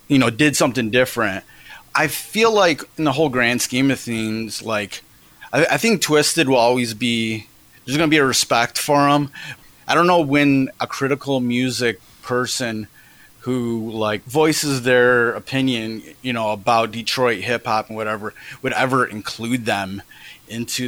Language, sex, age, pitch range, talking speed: English, male, 30-49, 110-135 Hz, 165 wpm